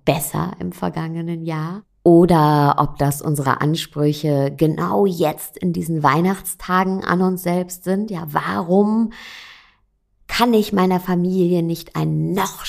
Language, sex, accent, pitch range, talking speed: German, female, German, 150-180 Hz, 130 wpm